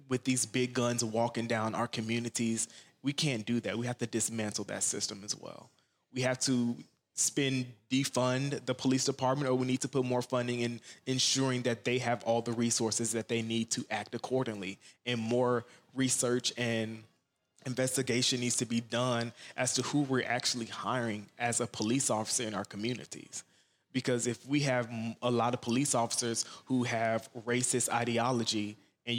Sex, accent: male, American